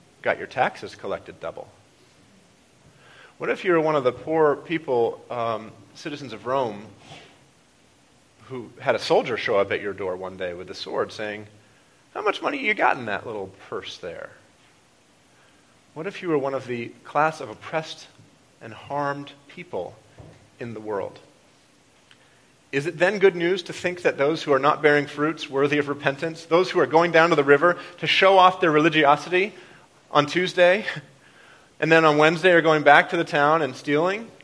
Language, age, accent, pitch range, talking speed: English, 40-59, American, 135-180 Hz, 180 wpm